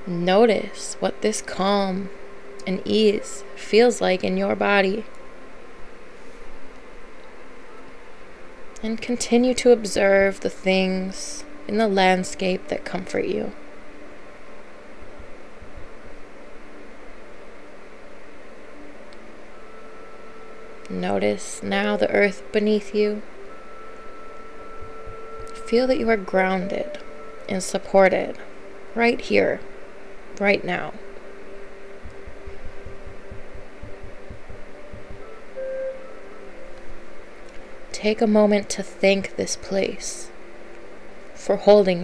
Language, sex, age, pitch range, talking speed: English, female, 20-39, 185-225 Hz, 70 wpm